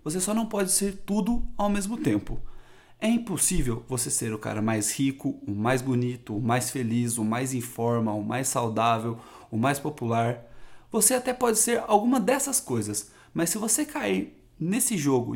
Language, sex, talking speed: Portuguese, male, 180 wpm